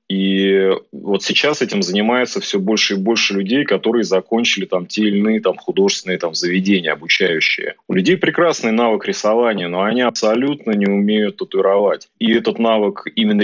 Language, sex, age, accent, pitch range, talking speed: Russian, male, 30-49, native, 100-125 Hz, 160 wpm